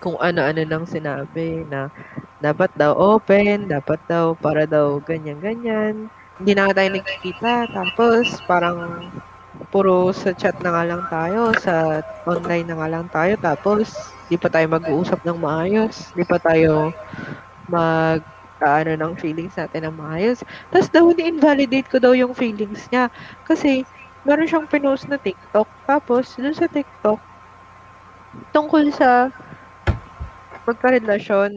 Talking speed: 130 wpm